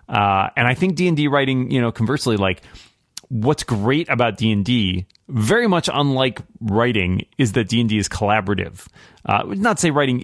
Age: 30-49